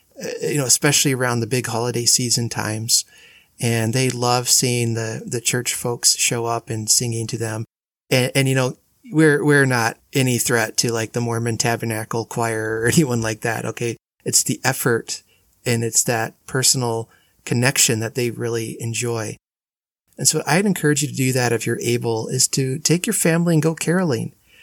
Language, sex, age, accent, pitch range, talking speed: English, male, 30-49, American, 120-150 Hz, 180 wpm